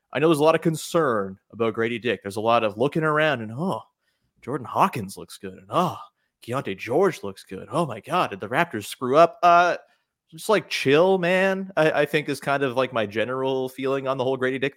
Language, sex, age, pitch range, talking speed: English, male, 30-49, 115-150 Hz, 230 wpm